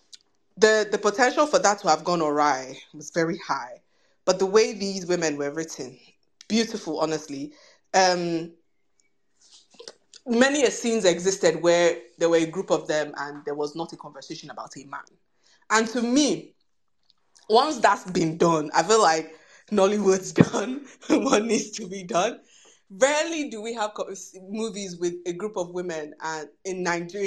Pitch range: 155-205 Hz